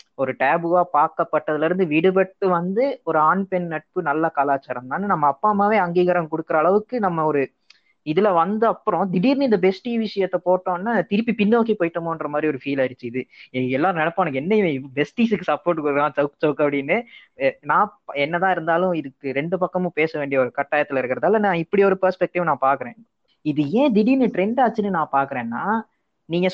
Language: Tamil